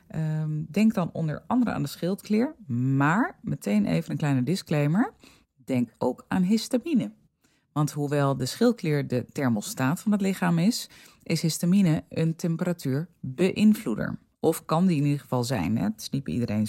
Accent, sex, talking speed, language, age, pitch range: Dutch, female, 145 wpm, Dutch, 30-49, 140-185 Hz